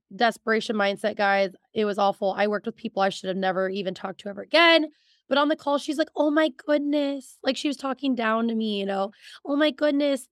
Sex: female